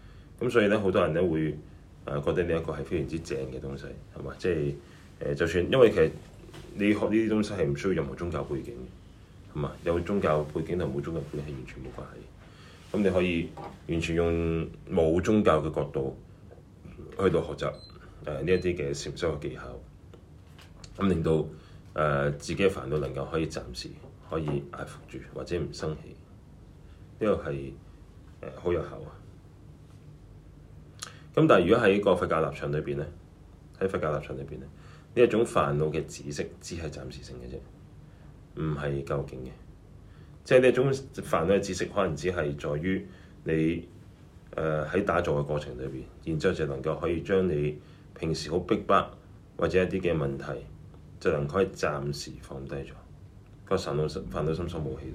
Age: 30-49